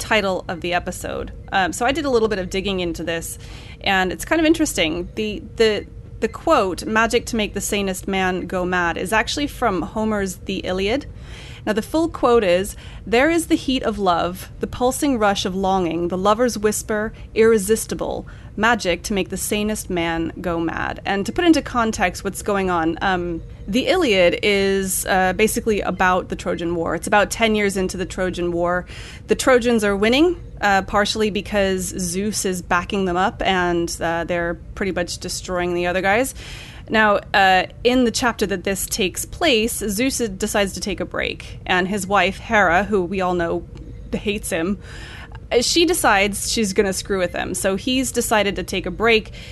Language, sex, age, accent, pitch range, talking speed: English, female, 30-49, American, 180-225 Hz, 185 wpm